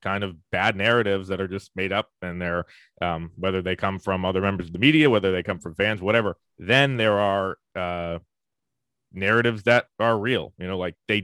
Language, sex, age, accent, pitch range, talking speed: English, male, 30-49, American, 90-110 Hz, 210 wpm